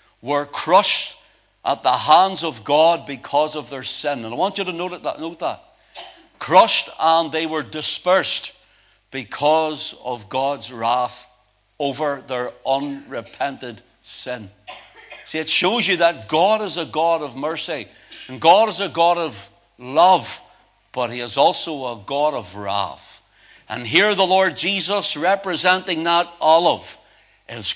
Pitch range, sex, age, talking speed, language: 120-170 Hz, male, 60-79, 145 wpm, English